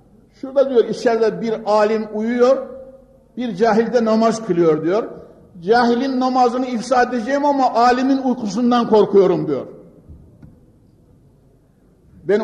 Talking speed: 100 wpm